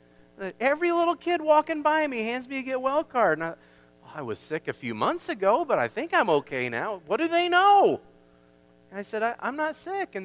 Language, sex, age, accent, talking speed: English, male, 40-59, American, 235 wpm